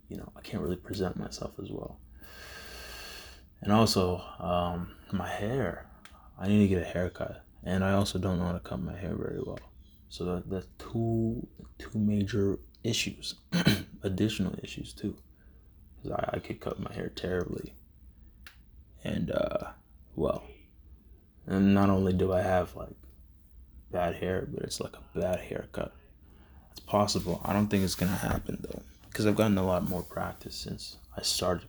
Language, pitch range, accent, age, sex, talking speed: English, 80-100 Hz, American, 20-39, male, 165 wpm